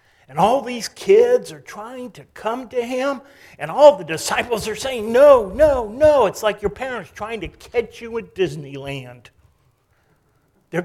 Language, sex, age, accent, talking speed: English, male, 50-69, American, 165 wpm